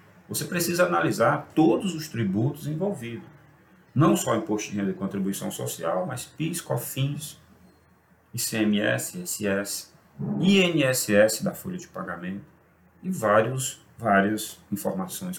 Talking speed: 110 wpm